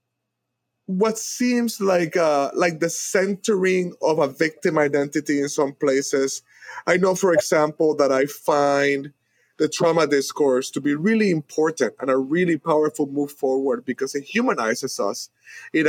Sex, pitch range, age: male, 145-185 Hz, 30-49